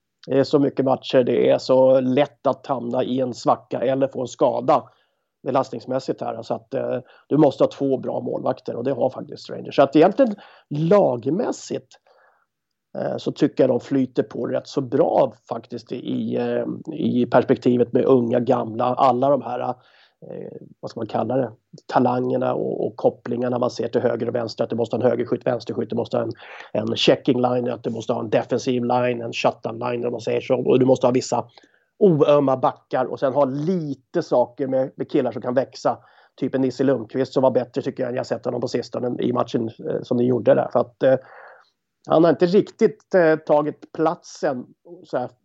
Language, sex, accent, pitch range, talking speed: English, male, Swedish, 125-145 Hz, 195 wpm